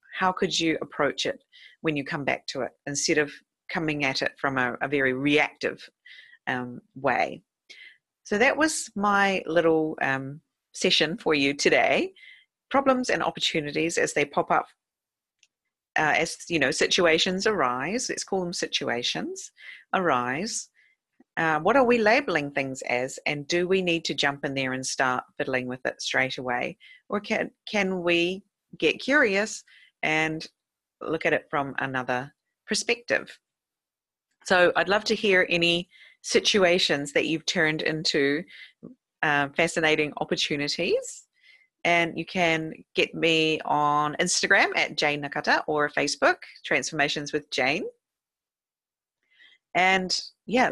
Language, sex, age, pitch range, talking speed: English, female, 40-59, 145-205 Hz, 140 wpm